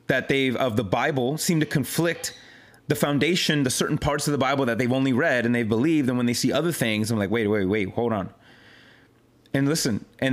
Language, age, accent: English, 30-49, American